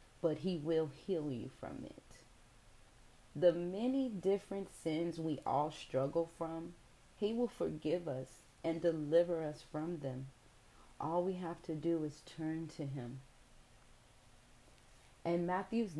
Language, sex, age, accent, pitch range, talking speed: English, female, 30-49, American, 140-185 Hz, 130 wpm